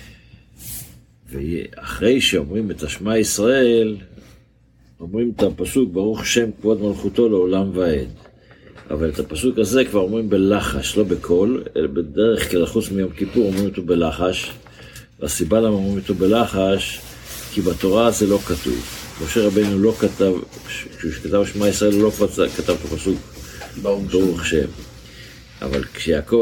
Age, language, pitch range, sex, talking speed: 60-79, Hebrew, 85-105 Hz, male, 135 wpm